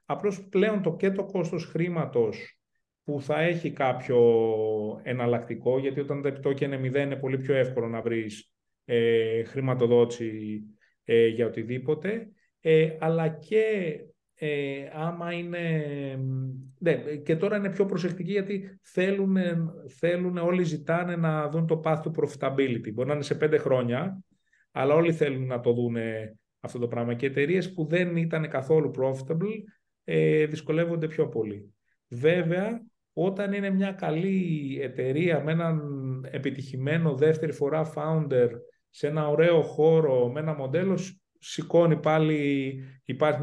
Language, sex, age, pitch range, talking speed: Greek, male, 30-49, 130-165 Hz, 135 wpm